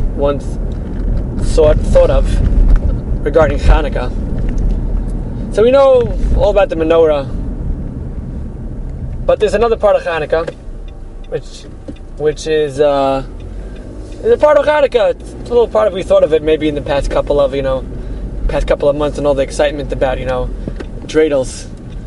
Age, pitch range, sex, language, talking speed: 20-39, 135-220 Hz, male, English, 150 wpm